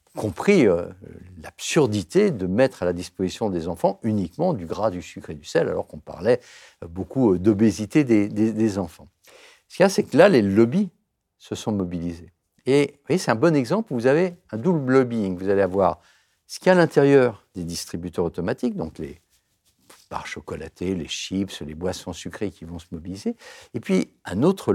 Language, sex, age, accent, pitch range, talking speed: French, male, 60-79, French, 90-135 Hz, 200 wpm